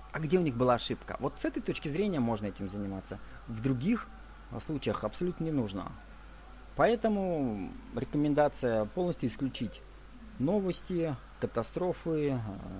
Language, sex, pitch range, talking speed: Russian, male, 115-160 Hz, 120 wpm